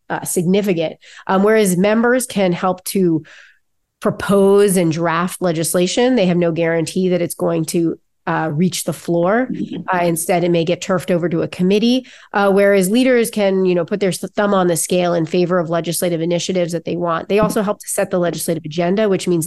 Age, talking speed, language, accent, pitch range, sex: 30-49, 195 wpm, English, American, 165-195 Hz, female